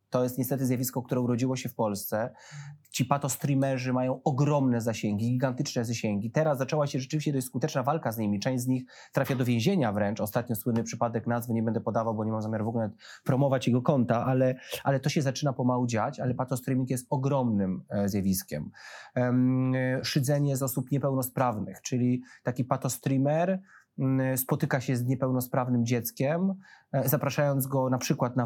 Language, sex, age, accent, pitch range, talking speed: Polish, male, 30-49, native, 125-145 Hz, 165 wpm